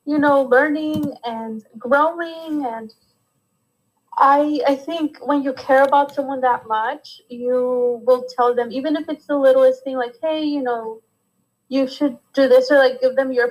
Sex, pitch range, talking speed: female, 235-275 Hz, 175 wpm